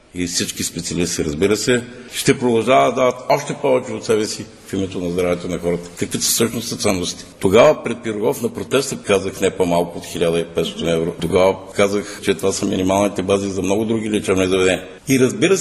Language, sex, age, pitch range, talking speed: Bulgarian, male, 50-69, 90-110 Hz, 190 wpm